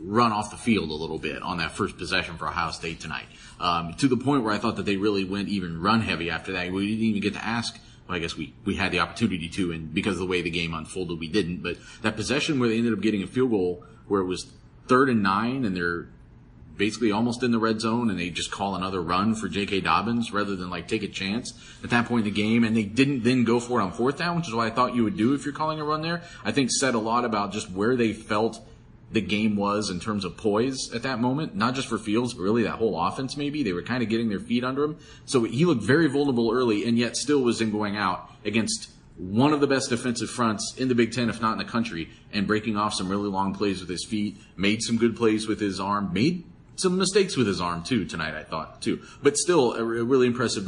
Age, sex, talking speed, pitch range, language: 30-49, male, 270 wpm, 95-120 Hz, English